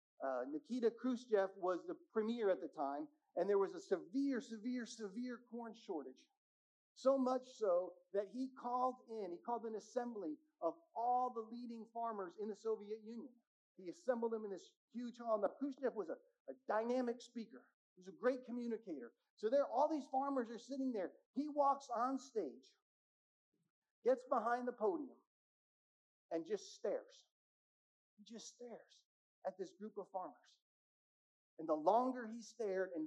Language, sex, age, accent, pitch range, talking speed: English, male, 50-69, American, 200-270 Hz, 165 wpm